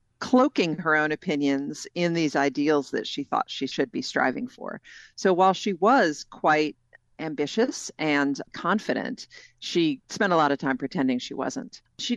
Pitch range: 145-220 Hz